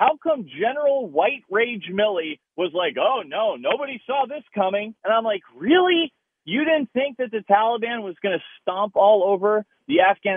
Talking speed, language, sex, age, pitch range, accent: 185 wpm, English, male, 40-59, 150-230 Hz, American